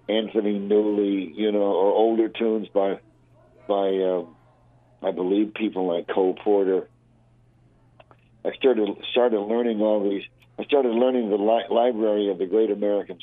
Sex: male